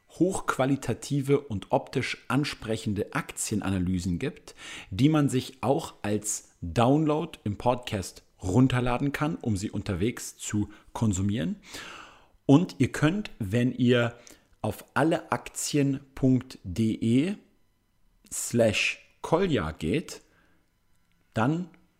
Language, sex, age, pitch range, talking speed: German, male, 40-59, 95-135 Hz, 85 wpm